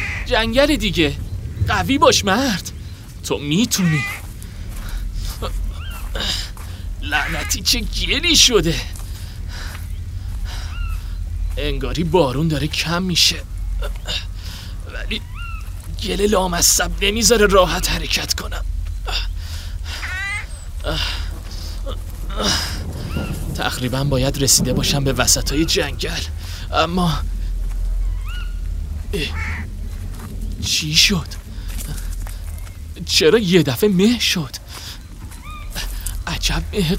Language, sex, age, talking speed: Persian, male, 30-49, 70 wpm